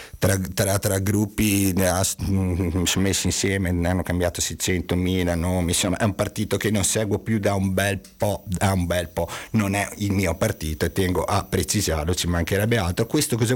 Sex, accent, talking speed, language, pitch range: male, native, 190 wpm, Italian, 95-120 Hz